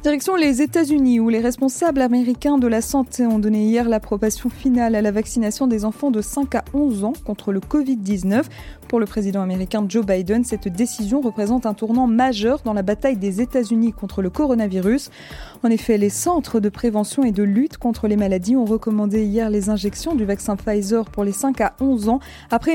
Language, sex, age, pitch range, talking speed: French, female, 20-39, 210-270 Hz, 205 wpm